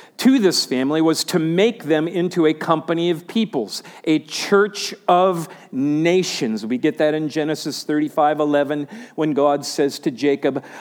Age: 50-69